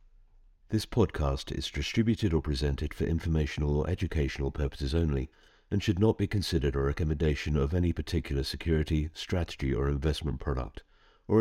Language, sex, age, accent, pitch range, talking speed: English, male, 50-69, British, 75-95 Hz, 145 wpm